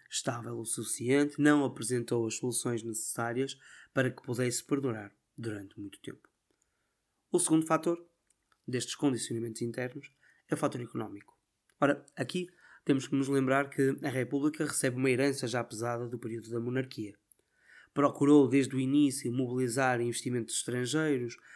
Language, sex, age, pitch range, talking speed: Portuguese, male, 20-39, 120-140 Hz, 140 wpm